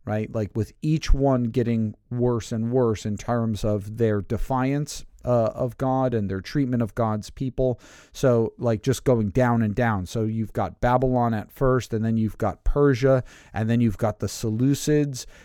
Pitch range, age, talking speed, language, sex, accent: 110-125 Hz, 40-59, 185 wpm, English, male, American